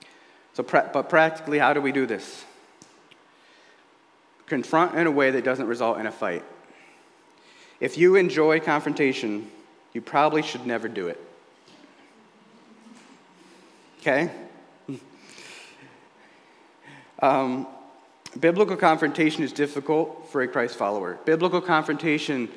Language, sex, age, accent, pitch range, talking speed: English, male, 40-59, American, 130-160 Hz, 105 wpm